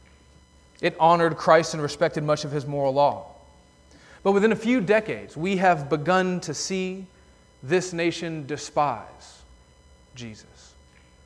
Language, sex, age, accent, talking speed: English, male, 40-59, American, 130 wpm